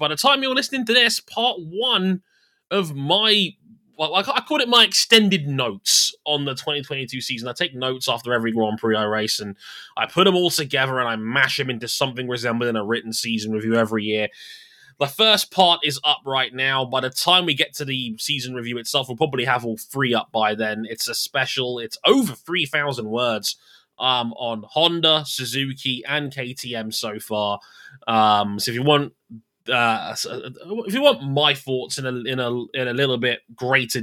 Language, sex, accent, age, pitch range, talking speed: English, male, British, 20-39, 115-155 Hz, 200 wpm